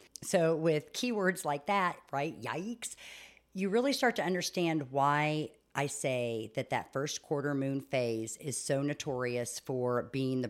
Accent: American